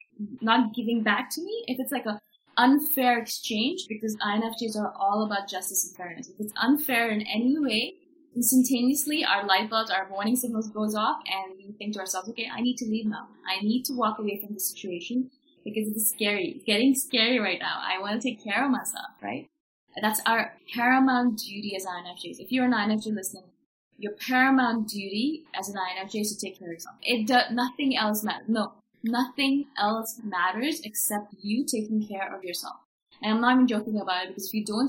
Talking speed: 205 wpm